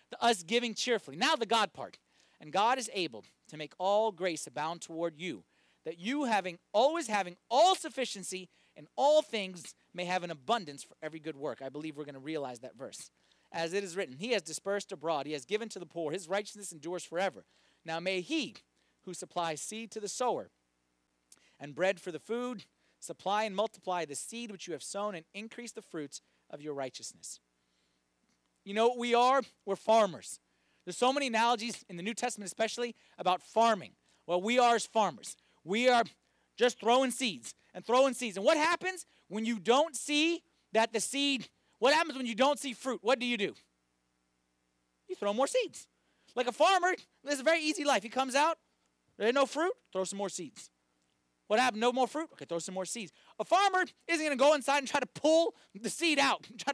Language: English